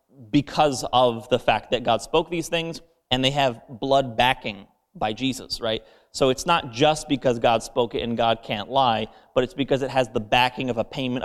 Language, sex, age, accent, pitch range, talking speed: English, male, 30-49, American, 115-135 Hz, 210 wpm